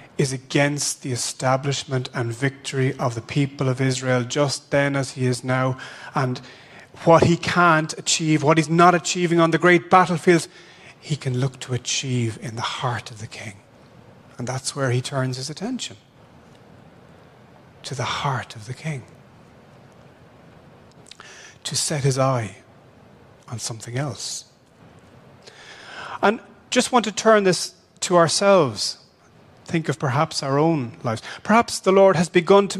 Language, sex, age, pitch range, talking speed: English, male, 30-49, 130-180 Hz, 150 wpm